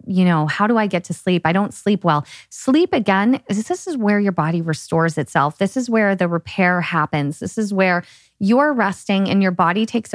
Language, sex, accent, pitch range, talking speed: English, female, American, 180-215 Hz, 215 wpm